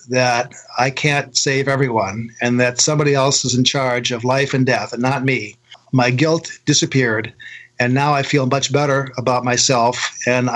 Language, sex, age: English, male, 50-69